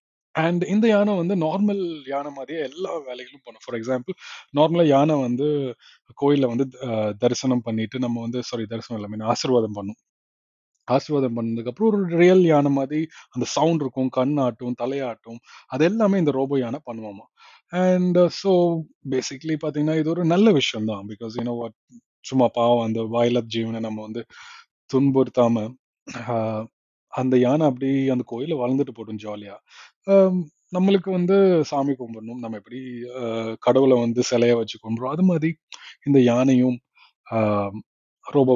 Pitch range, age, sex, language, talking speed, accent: 115-155 Hz, 20-39, male, Tamil, 130 wpm, native